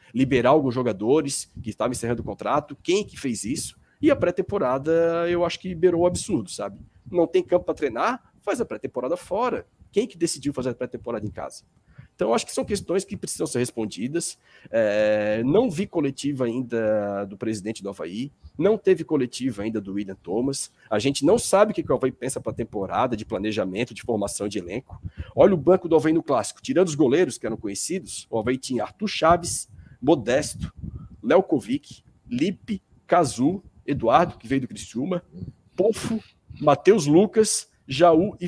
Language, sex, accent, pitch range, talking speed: Portuguese, male, Brazilian, 120-190 Hz, 185 wpm